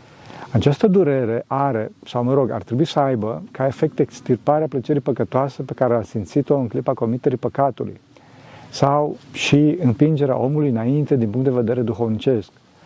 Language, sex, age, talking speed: Romanian, male, 40-59, 160 wpm